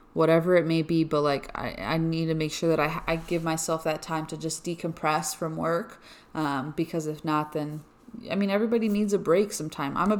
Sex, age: female, 20-39